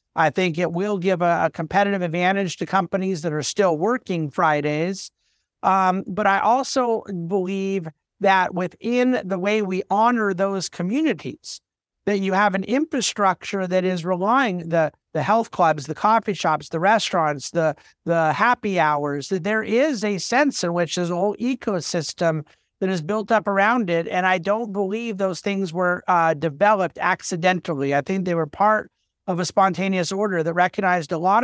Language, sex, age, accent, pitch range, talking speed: English, male, 50-69, American, 175-210 Hz, 170 wpm